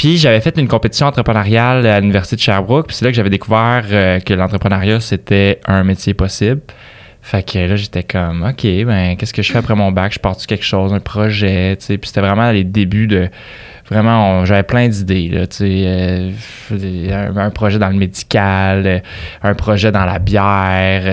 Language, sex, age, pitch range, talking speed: French, male, 20-39, 95-110 Hz, 200 wpm